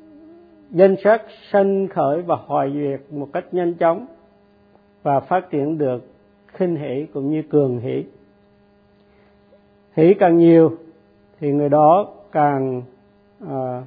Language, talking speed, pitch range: Vietnamese, 125 wpm, 130-180 Hz